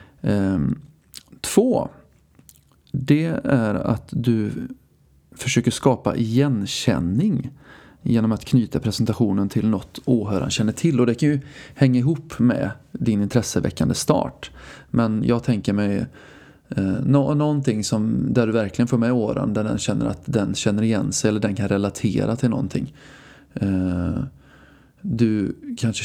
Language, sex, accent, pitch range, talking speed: Swedish, male, native, 105-135 Hz, 130 wpm